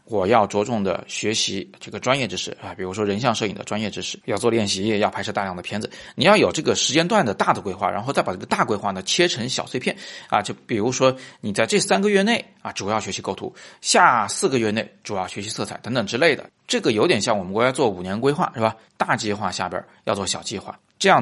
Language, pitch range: Chinese, 100-135 Hz